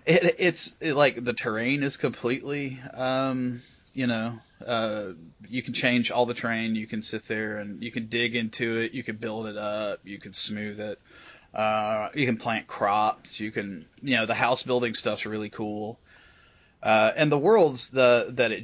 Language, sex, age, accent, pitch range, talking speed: English, male, 30-49, American, 110-135 Hz, 180 wpm